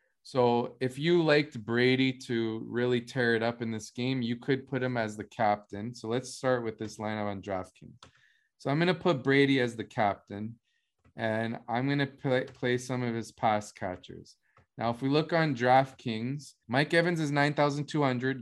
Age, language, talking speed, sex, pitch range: 20-39, English, 190 wpm, male, 115-145 Hz